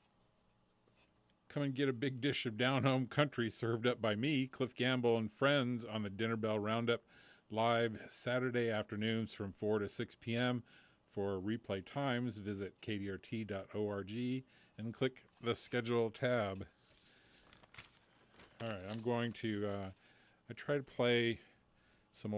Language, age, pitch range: English, 40-59, 100-120 Hz